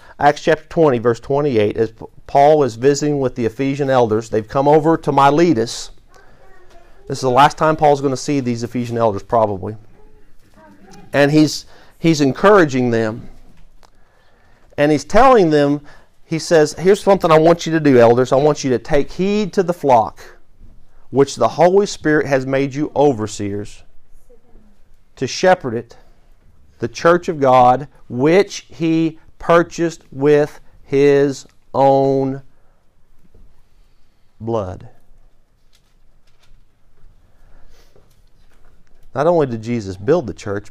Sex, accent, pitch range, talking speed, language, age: male, American, 110-150 Hz, 130 wpm, English, 40-59